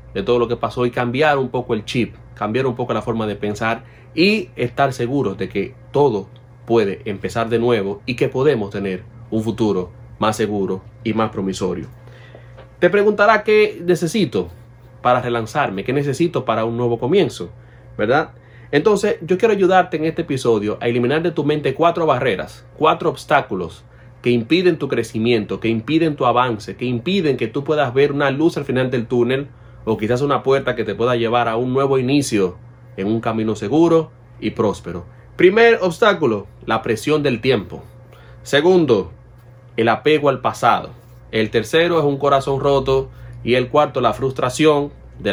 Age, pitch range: 30-49, 115-150 Hz